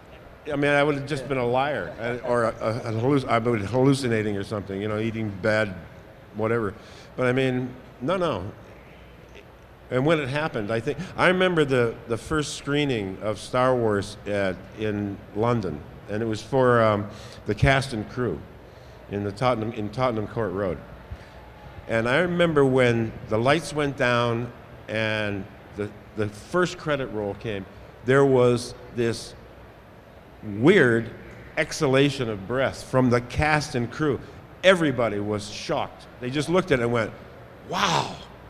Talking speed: 155 wpm